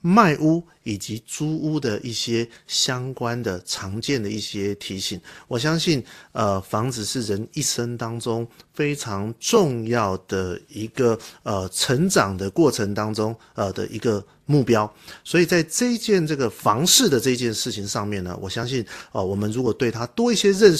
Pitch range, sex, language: 105-135 Hz, male, Chinese